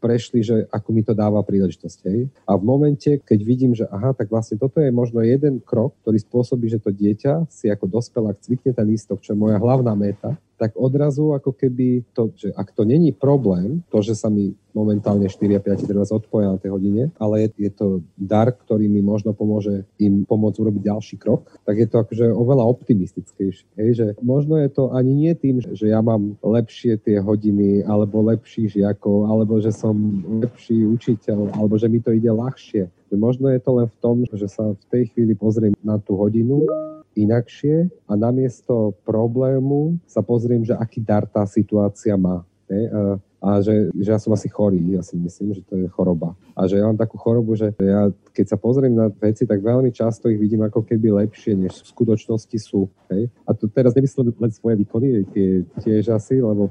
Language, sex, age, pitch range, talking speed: Slovak, male, 40-59, 105-120 Hz, 195 wpm